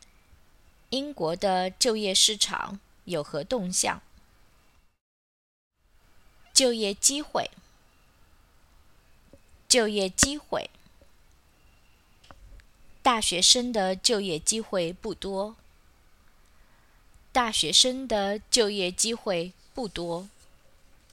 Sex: female